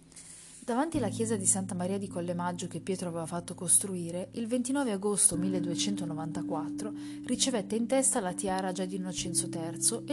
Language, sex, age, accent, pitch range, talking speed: Italian, female, 30-49, native, 160-205 Hz, 160 wpm